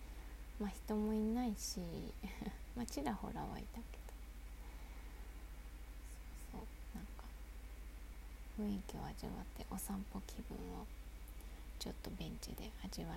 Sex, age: female, 20-39